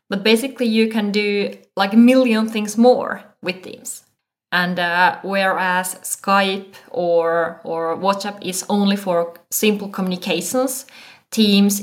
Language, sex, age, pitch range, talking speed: English, female, 20-39, 185-235 Hz, 125 wpm